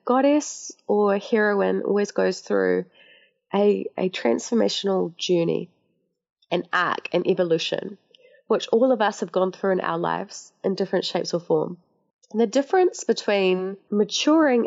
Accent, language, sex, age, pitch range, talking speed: Australian, English, female, 20-39, 180-235 Hz, 135 wpm